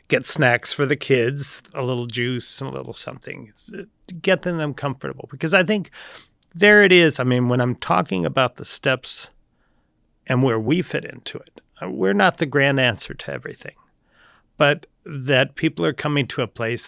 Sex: male